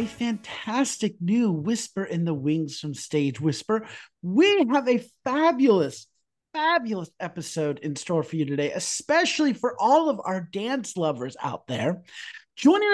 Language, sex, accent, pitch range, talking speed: English, male, American, 180-275 Hz, 145 wpm